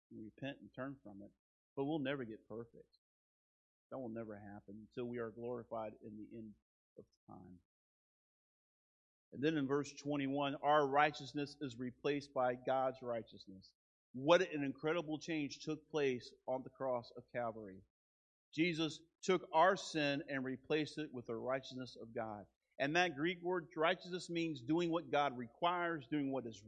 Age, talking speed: 40-59, 160 wpm